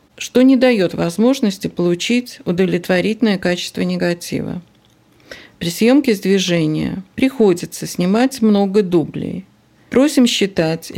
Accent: native